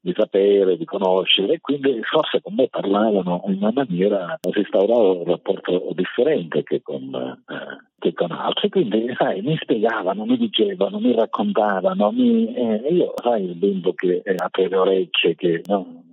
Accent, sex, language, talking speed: native, male, Italian, 160 wpm